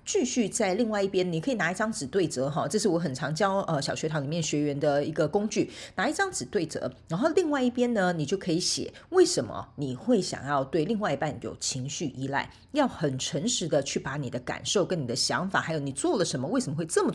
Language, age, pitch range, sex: Chinese, 40-59, 150-230 Hz, female